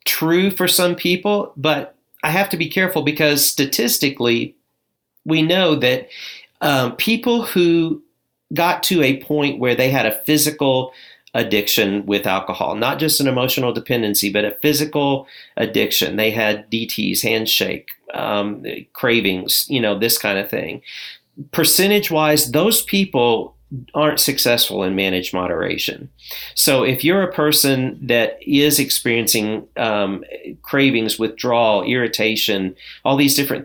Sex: male